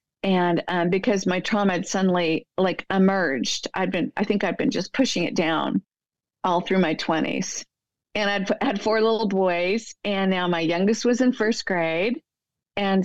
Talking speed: 175 wpm